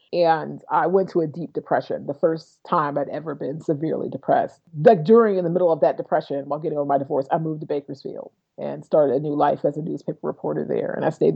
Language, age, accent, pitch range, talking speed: English, 30-49, American, 155-185 Hz, 240 wpm